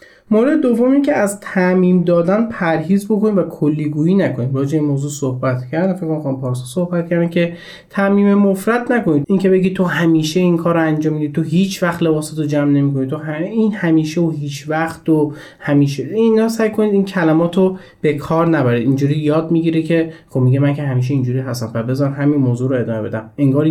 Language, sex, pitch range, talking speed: Persian, male, 140-185 Hz, 185 wpm